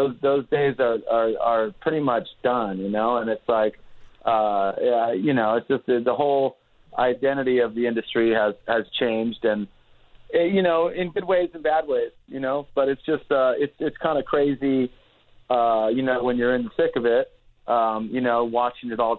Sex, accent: male, American